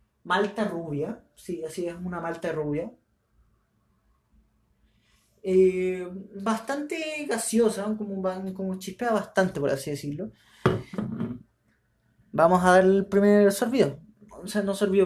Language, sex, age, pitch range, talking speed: Spanish, male, 30-49, 140-195 Hz, 115 wpm